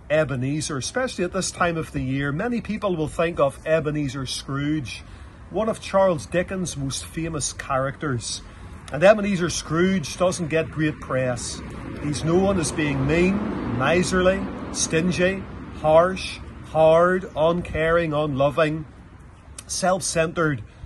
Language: English